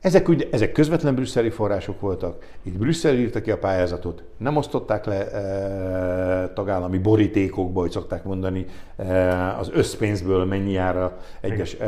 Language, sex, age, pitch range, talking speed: Hungarian, male, 60-79, 90-105 Hz, 140 wpm